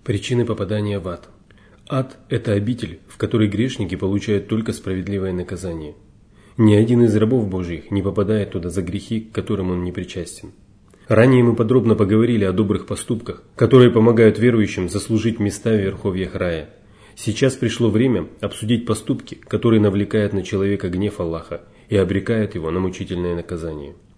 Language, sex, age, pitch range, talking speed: Russian, male, 30-49, 95-115 Hz, 150 wpm